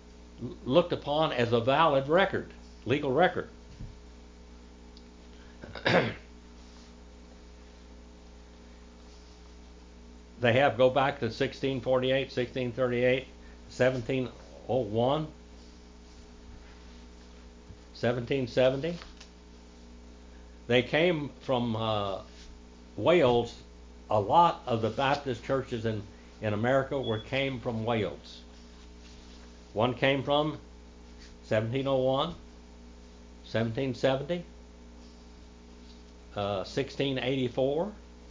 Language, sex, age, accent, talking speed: English, male, 60-79, American, 65 wpm